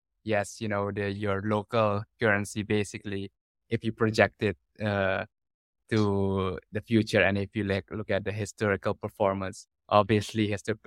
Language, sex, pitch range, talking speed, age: English, male, 100-110 Hz, 150 wpm, 20-39